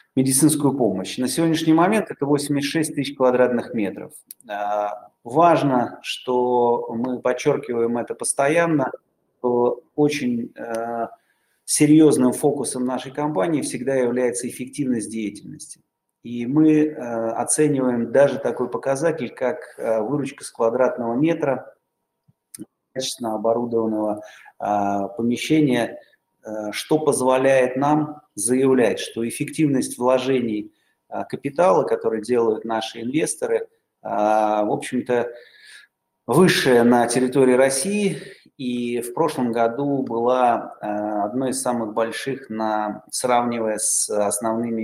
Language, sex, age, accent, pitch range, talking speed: Russian, male, 30-49, native, 115-140 Hz, 100 wpm